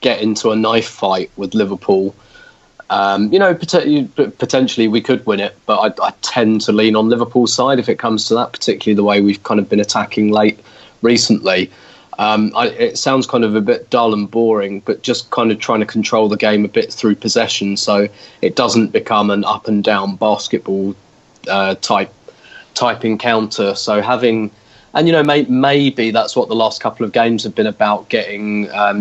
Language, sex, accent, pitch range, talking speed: English, male, British, 105-115 Hz, 185 wpm